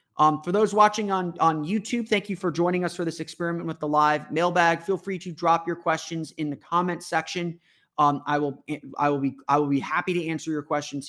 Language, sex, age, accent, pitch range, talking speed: English, male, 30-49, American, 145-175 Hz, 235 wpm